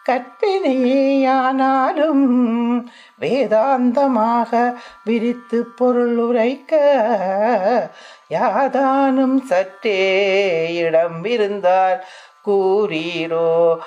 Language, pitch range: Tamil, 195-260 Hz